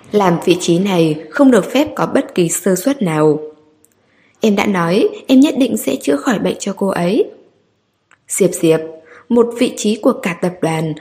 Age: 10-29